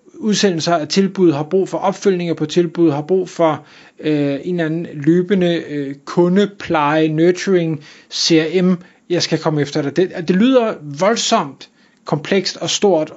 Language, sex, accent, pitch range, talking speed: Danish, male, native, 150-195 Hz, 150 wpm